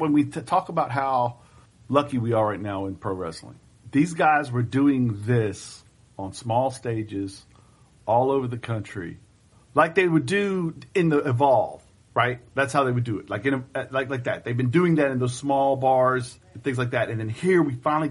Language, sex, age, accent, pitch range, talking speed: English, male, 40-59, American, 120-165 Hz, 200 wpm